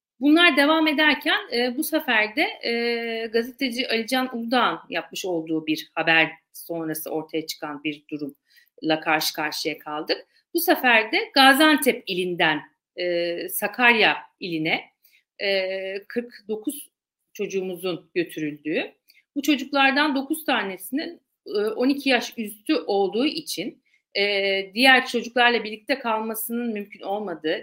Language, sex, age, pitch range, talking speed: Turkish, female, 50-69, 180-260 Hz, 115 wpm